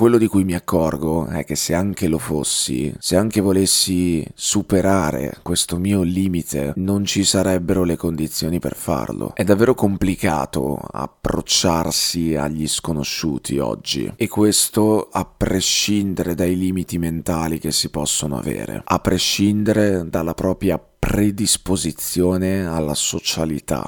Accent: native